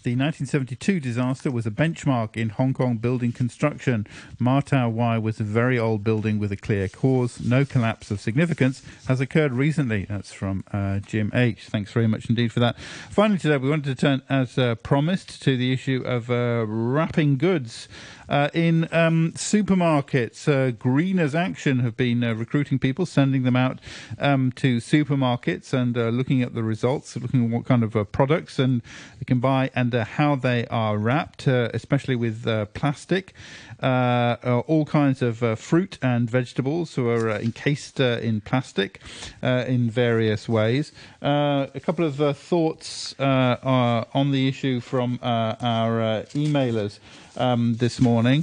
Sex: male